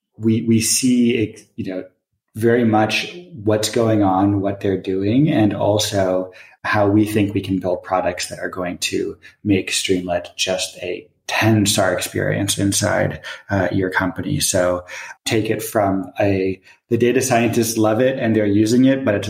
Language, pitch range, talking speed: English, 95-110 Hz, 165 wpm